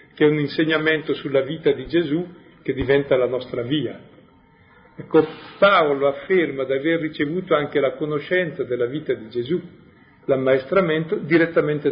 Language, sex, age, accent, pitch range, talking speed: Italian, male, 50-69, native, 140-190 Hz, 140 wpm